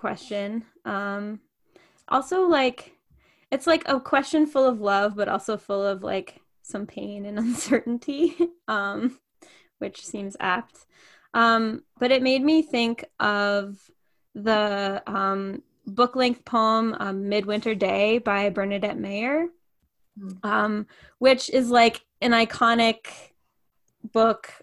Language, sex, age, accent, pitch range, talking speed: English, female, 10-29, American, 210-255 Hz, 120 wpm